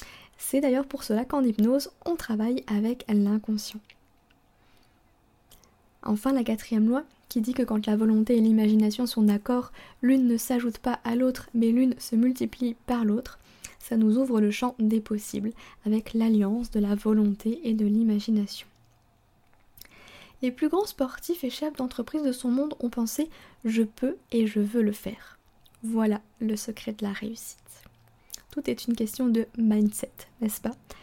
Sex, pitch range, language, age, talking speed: female, 210-250 Hz, French, 20-39, 160 wpm